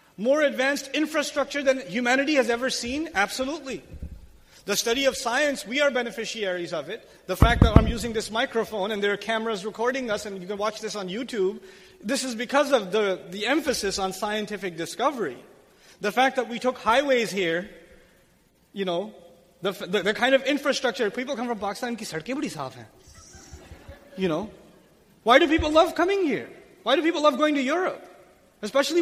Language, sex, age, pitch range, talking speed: English, male, 30-49, 205-280 Hz, 170 wpm